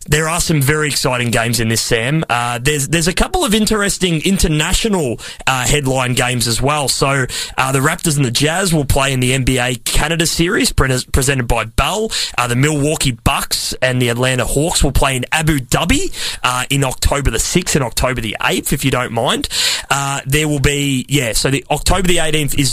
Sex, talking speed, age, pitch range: male, 205 wpm, 30-49, 130-160 Hz